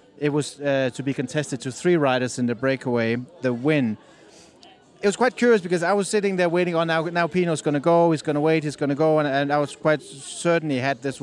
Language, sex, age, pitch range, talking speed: English, male, 30-49, 135-165 Hz, 255 wpm